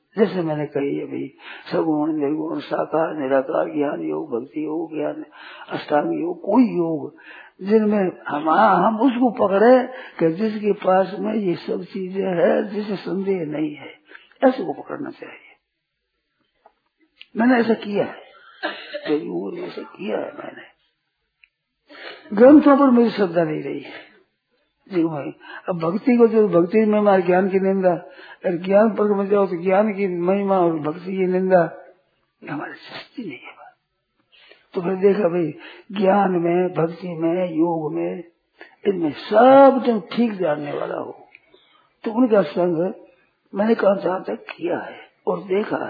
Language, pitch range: Hindi, 170-220 Hz